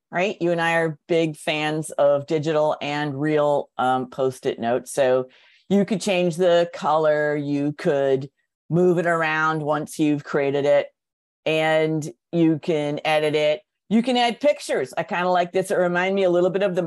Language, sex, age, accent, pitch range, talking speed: English, female, 50-69, American, 150-180 Hz, 180 wpm